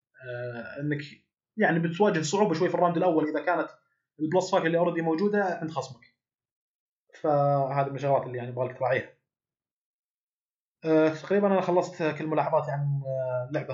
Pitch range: 140-165 Hz